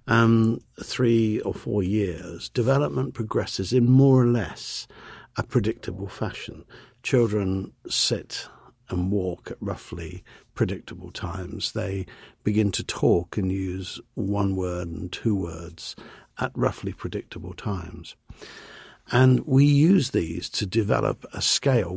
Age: 50-69